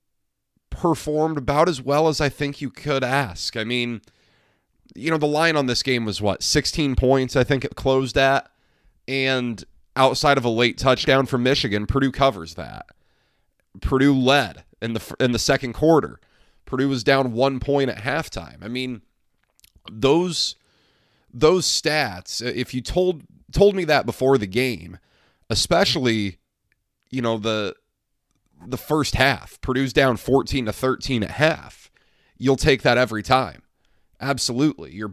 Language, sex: English, male